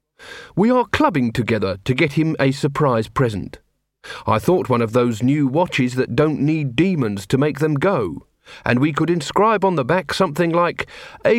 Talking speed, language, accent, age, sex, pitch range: 185 wpm, English, British, 40-59, male, 130-185 Hz